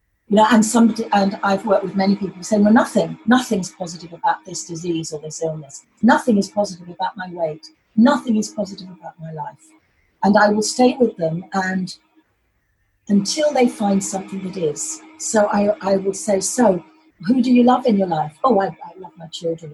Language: English